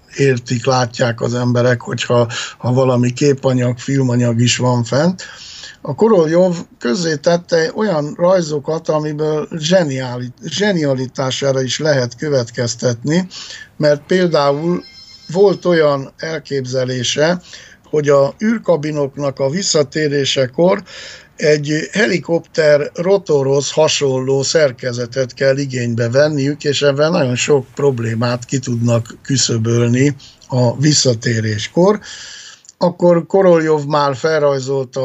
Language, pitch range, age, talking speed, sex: Hungarian, 125-160 Hz, 60-79, 90 wpm, male